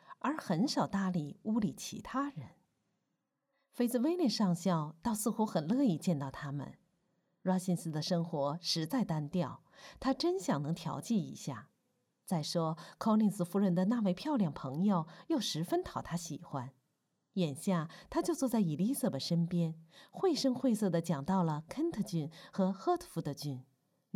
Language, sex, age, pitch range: Chinese, female, 50-69, 165-225 Hz